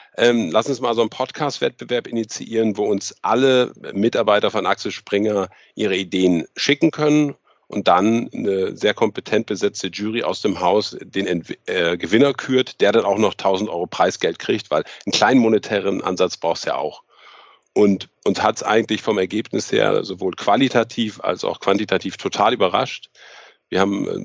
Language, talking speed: German, 165 wpm